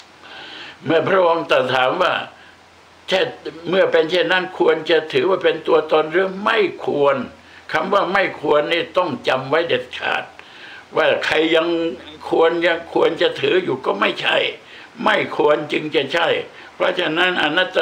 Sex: male